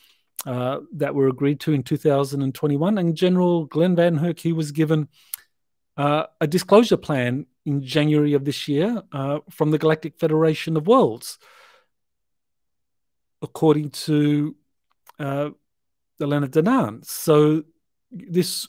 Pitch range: 140-165 Hz